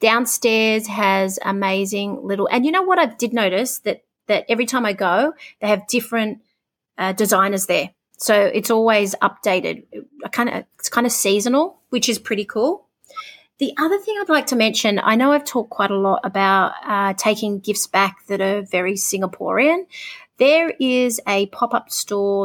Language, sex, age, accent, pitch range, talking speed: English, female, 30-49, Australian, 200-260 Hz, 175 wpm